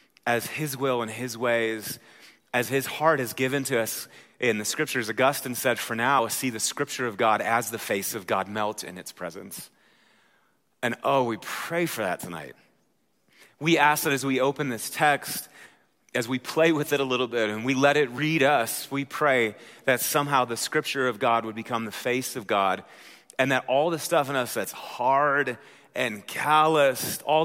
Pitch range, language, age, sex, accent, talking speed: 110-140 Hz, English, 30-49, male, American, 195 wpm